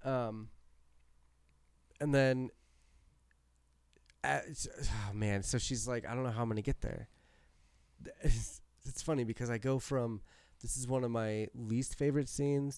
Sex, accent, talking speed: male, American, 155 wpm